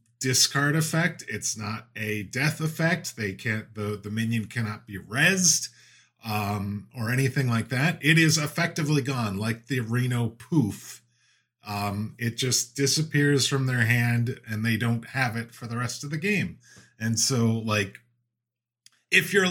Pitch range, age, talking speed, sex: 110-135 Hz, 30-49, 155 wpm, male